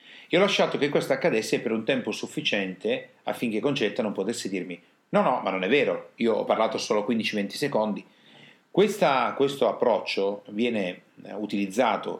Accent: native